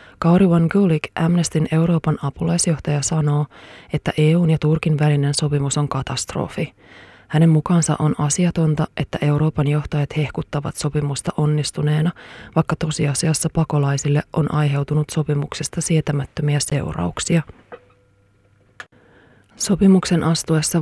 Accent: native